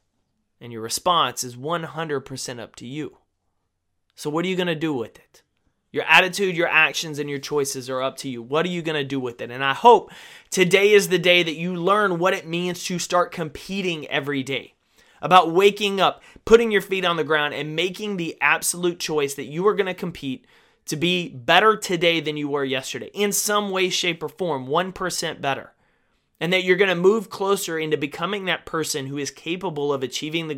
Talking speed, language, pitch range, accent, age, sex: 210 wpm, English, 140-180 Hz, American, 30-49, male